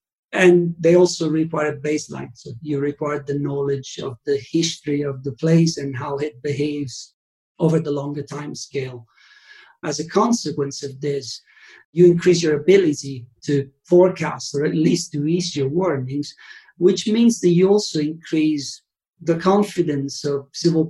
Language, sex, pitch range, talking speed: English, male, 140-170 Hz, 155 wpm